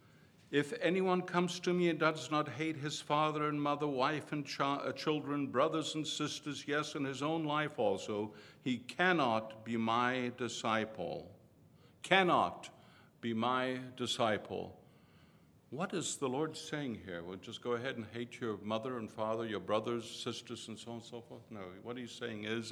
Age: 60-79